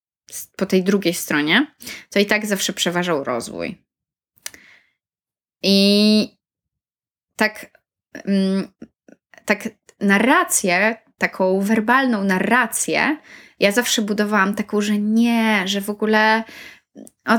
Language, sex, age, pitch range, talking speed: Polish, female, 20-39, 190-240 Hz, 95 wpm